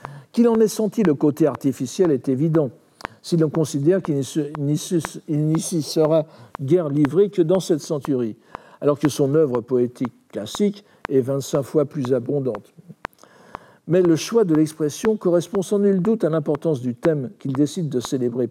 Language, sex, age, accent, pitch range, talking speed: French, male, 60-79, French, 130-180 Hz, 160 wpm